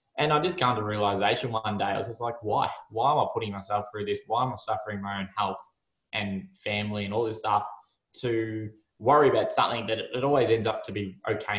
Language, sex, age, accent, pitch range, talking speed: English, male, 20-39, Australian, 105-120 Hz, 235 wpm